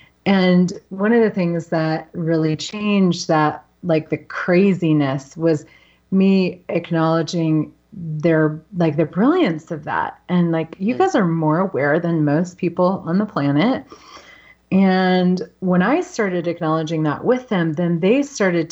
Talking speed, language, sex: 145 wpm, English, female